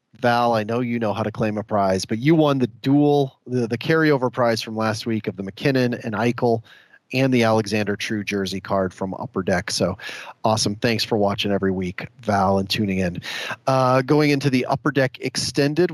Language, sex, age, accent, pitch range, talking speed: English, male, 30-49, American, 110-140 Hz, 205 wpm